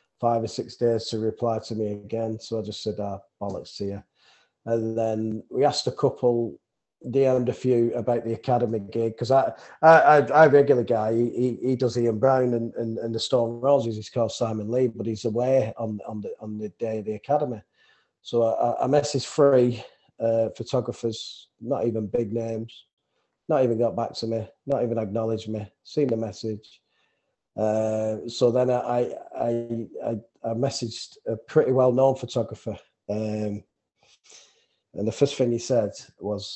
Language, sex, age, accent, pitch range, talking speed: English, male, 30-49, British, 110-125 Hz, 175 wpm